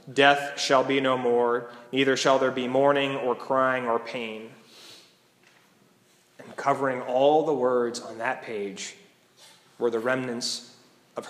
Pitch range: 130-155 Hz